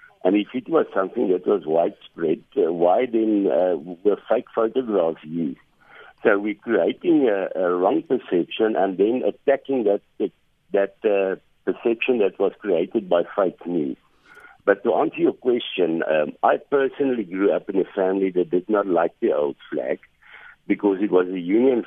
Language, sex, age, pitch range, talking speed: English, male, 60-79, 90-130 Hz, 165 wpm